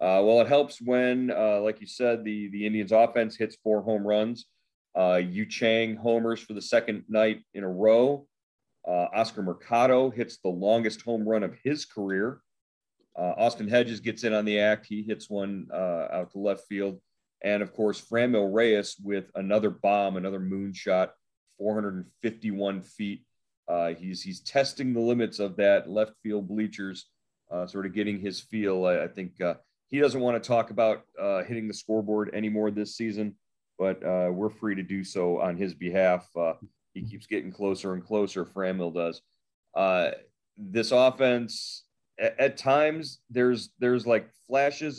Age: 40-59